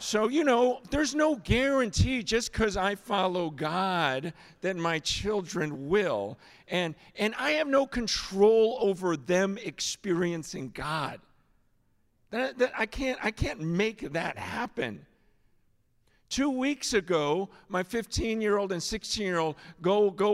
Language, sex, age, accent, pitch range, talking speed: English, male, 50-69, American, 165-230 Hz, 120 wpm